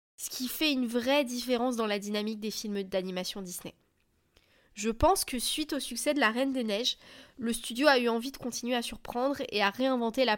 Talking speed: 215 wpm